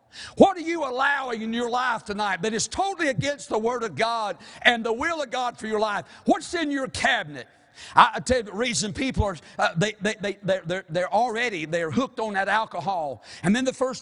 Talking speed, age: 220 wpm, 50-69